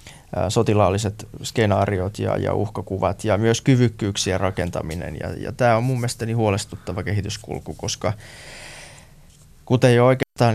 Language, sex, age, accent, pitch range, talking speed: Finnish, male, 20-39, native, 90-115 Hz, 115 wpm